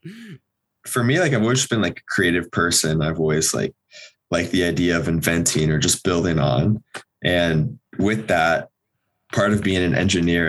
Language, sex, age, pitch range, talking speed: English, male, 20-39, 85-100 Hz, 170 wpm